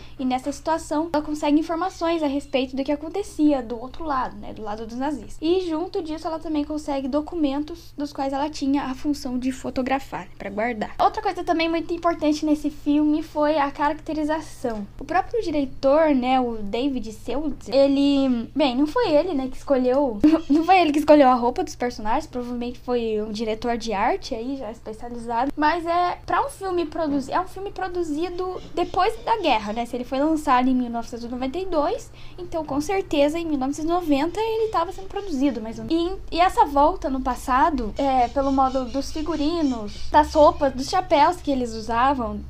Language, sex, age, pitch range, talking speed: Portuguese, female, 10-29, 260-325 Hz, 185 wpm